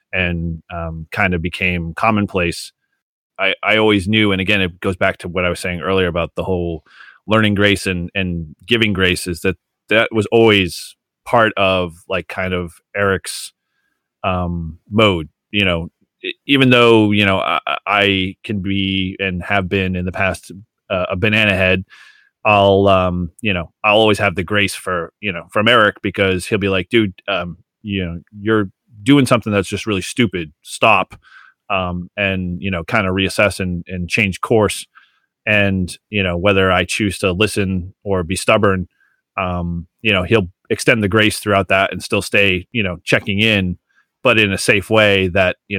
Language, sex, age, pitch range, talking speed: English, male, 30-49, 90-105 Hz, 180 wpm